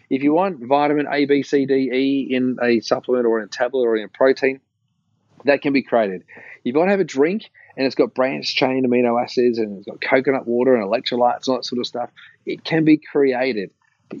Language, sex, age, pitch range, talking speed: English, male, 30-49, 110-135 Hz, 230 wpm